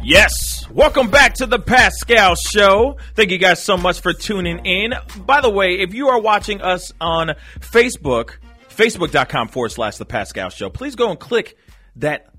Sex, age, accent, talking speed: male, 30-49, American, 175 wpm